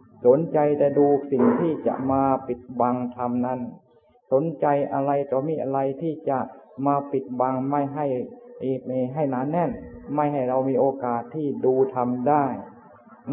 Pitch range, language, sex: 125-145 Hz, Thai, male